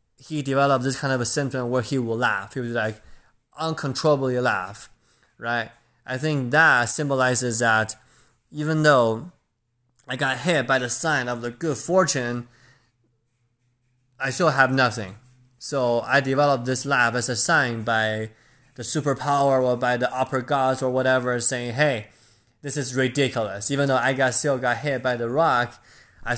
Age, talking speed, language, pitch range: 20-39, 165 wpm, English, 115-130 Hz